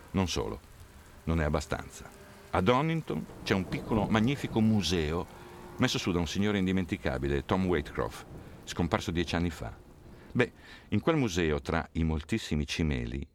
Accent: native